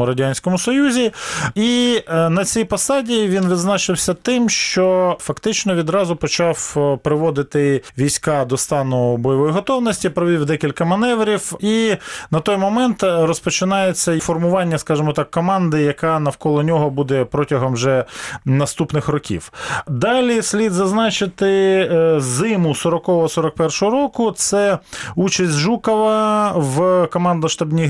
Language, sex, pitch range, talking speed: Ukrainian, male, 155-200 Hz, 110 wpm